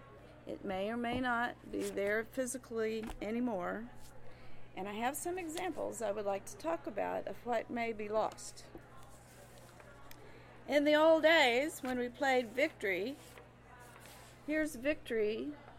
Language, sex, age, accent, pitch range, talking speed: English, female, 50-69, American, 210-285 Hz, 135 wpm